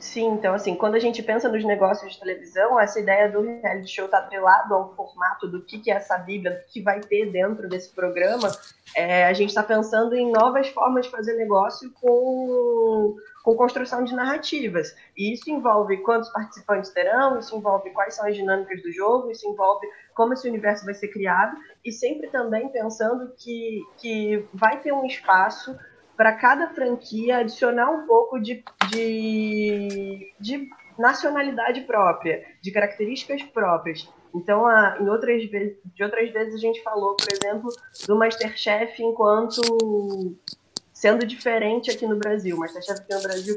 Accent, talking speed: Brazilian, 165 wpm